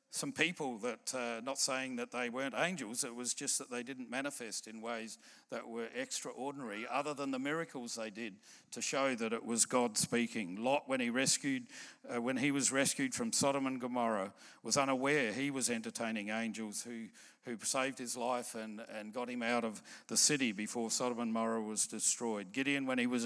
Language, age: English, 50-69